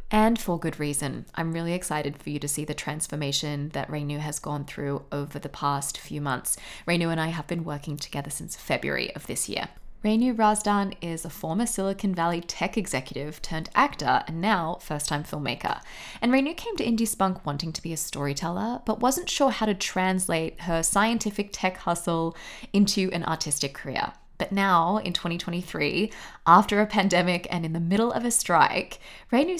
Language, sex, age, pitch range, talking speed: English, female, 20-39, 160-205 Hz, 185 wpm